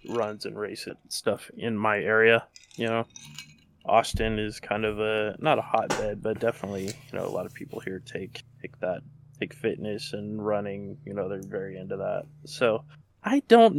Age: 20-39